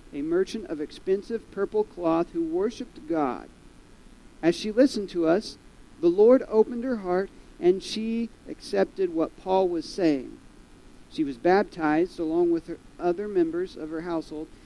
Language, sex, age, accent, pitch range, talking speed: English, male, 50-69, American, 170-270 Hz, 145 wpm